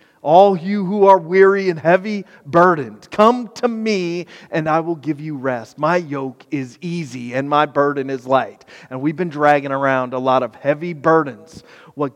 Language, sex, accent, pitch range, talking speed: English, male, American, 140-180 Hz, 185 wpm